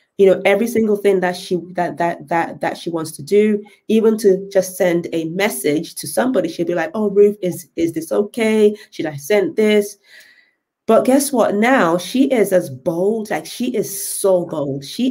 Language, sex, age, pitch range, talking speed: English, female, 30-49, 165-200 Hz, 200 wpm